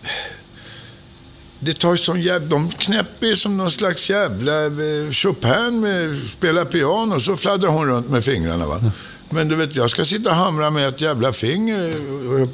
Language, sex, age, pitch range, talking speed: English, male, 60-79, 100-160 Hz, 165 wpm